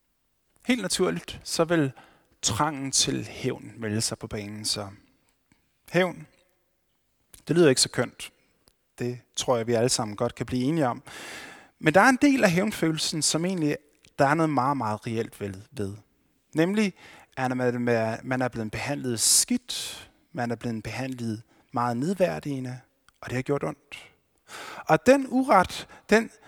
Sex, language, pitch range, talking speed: male, Danish, 120-170 Hz, 150 wpm